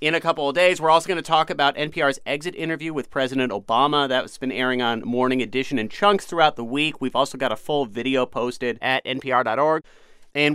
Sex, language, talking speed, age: male, English, 215 wpm, 30-49